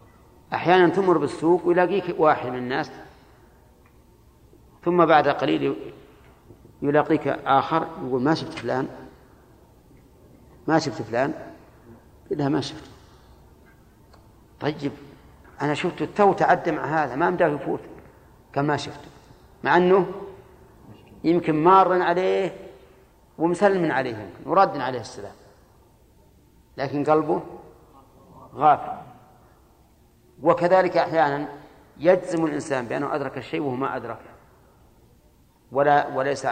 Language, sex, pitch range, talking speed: Arabic, male, 125-160 Hz, 100 wpm